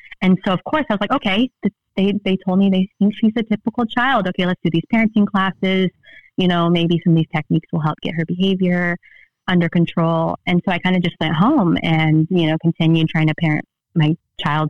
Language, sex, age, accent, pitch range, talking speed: English, female, 30-49, American, 165-195 Hz, 225 wpm